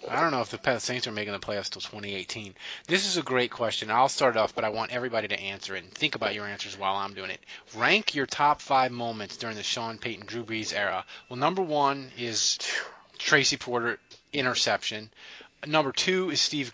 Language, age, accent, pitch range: English, 30-49, American, 115-155 Hz